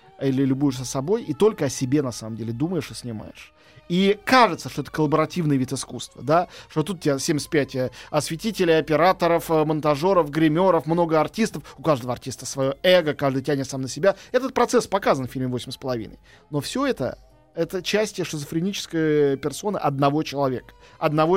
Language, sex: Russian, male